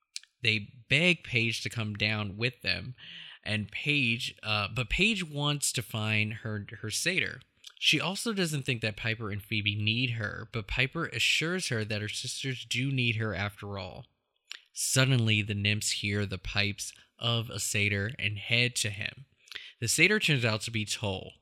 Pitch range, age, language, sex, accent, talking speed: 105-135 Hz, 20-39, English, male, American, 170 wpm